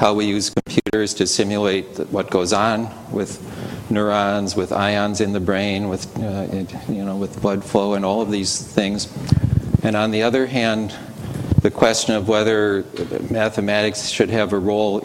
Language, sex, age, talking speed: English, male, 50-69, 170 wpm